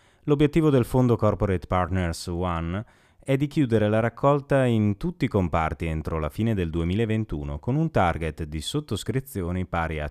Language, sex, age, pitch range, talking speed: Italian, male, 30-49, 85-125 Hz, 160 wpm